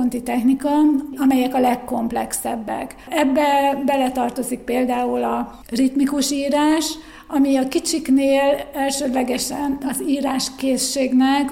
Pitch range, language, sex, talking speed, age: 250-275 Hz, Hungarian, female, 85 wpm, 60-79